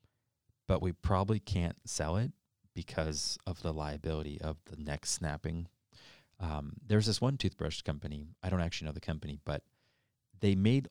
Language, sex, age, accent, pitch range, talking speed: English, male, 30-49, American, 80-110 Hz, 160 wpm